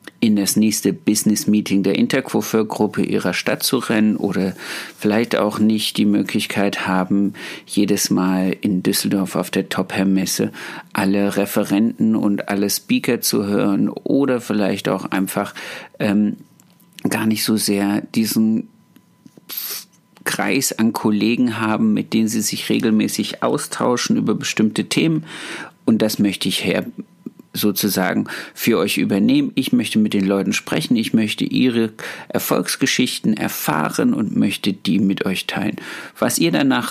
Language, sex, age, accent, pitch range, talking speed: German, male, 50-69, German, 100-125 Hz, 135 wpm